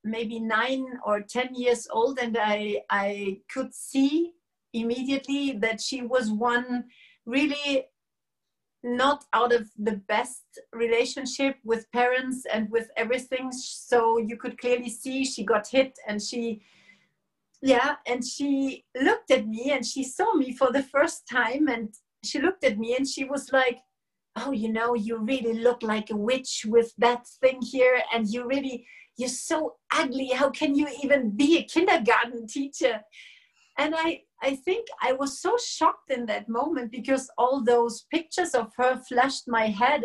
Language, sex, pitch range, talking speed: English, female, 235-290 Hz, 160 wpm